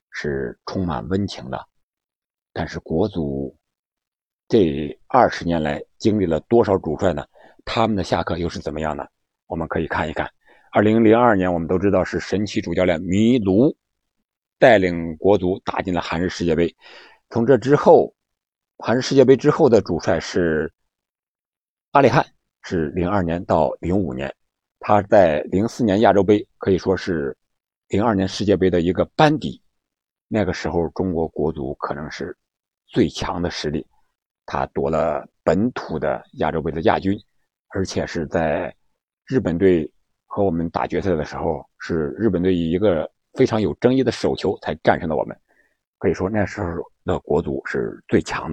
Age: 50-69